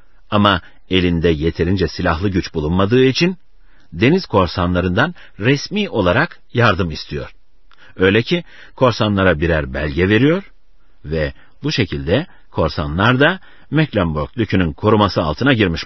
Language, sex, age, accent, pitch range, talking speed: Turkish, male, 60-79, native, 85-130 Hz, 110 wpm